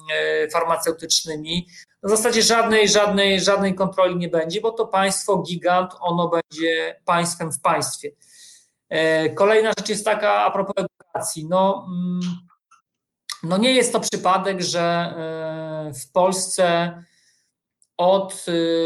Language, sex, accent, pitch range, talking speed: Polish, male, native, 160-185 Hz, 110 wpm